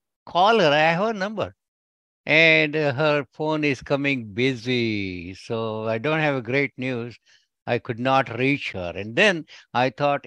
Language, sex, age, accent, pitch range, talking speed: English, male, 60-79, Indian, 120-170 Hz, 160 wpm